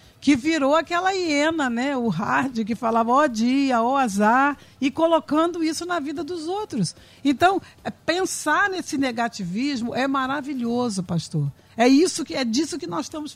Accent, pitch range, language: Brazilian, 240-320 Hz, Portuguese